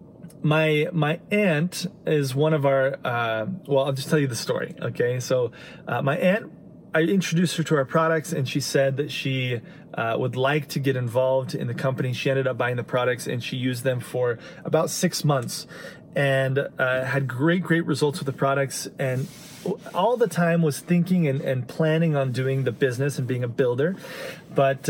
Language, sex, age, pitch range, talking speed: English, male, 30-49, 130-165 Hz, 195 wpm